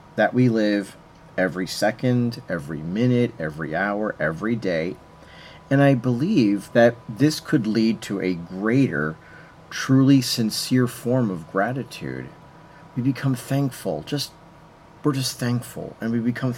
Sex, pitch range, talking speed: male, 105-140 Hz, 130 wpm